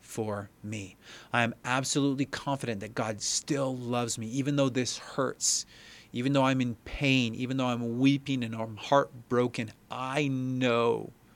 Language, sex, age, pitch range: English, male, 30-49, 110-130 Hz